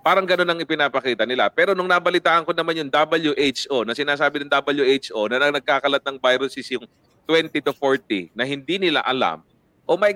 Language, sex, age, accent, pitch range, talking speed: English, male, 30-49, Filipino, 125-160 Hz, 185 wpm